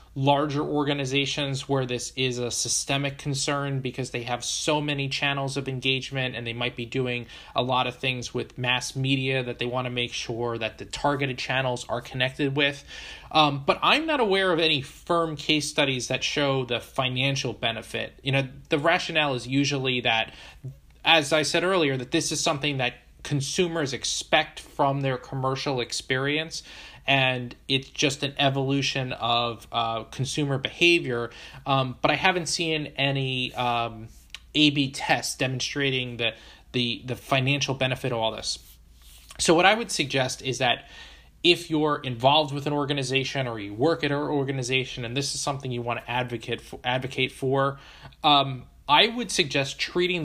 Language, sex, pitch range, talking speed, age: English, male, 125-145 Hz, 165 wpm, 20-39